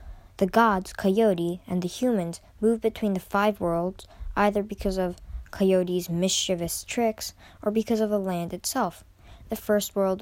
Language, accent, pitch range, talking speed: English, American, 165-205 Hz, 155 wpm